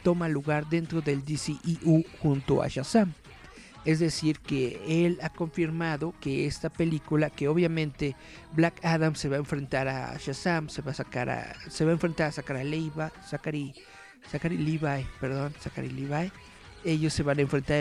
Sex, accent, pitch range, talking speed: male, Mexican, 140-165 Hz, 150 wpm